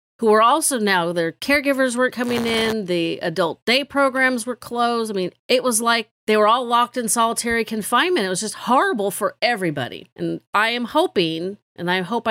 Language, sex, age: English, female, 40-59